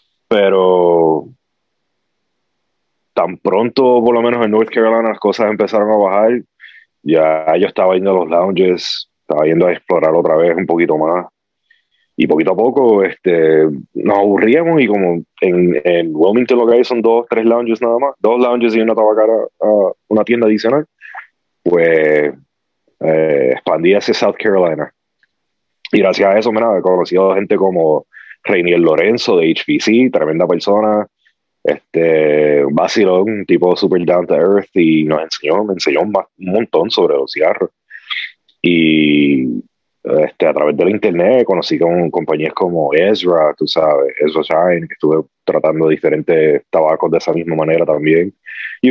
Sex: male